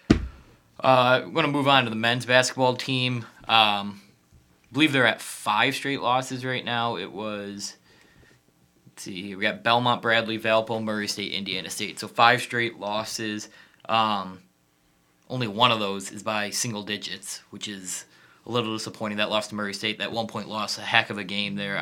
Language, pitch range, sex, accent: English, 100-120 Hz, male, American